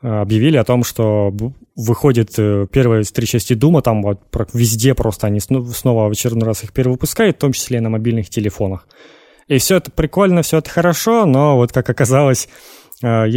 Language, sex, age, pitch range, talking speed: Russian, male, 20-39, 110-130 Hz, 170 wpm